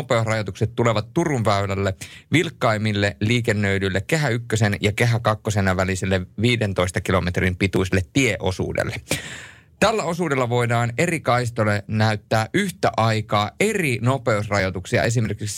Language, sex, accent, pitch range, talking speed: Finnish, male, native, 95-130 Hz, 105 wpm